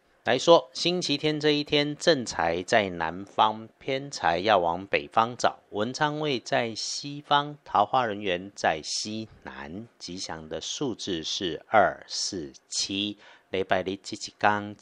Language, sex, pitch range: Chinese, male, 90-140 Hz